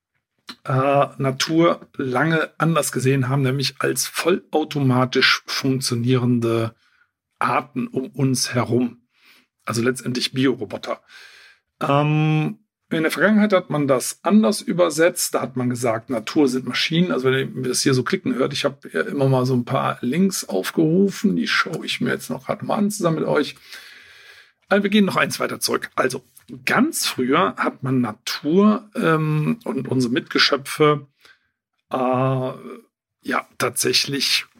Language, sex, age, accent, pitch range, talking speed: German, male, 50-69, German, 130-160 Hz, 140 wpm